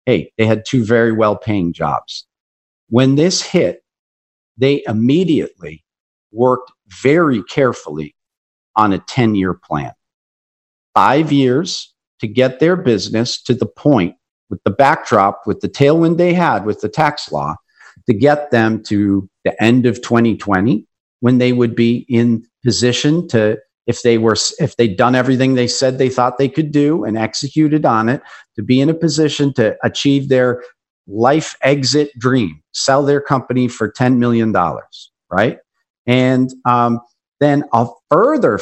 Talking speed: 150 wpm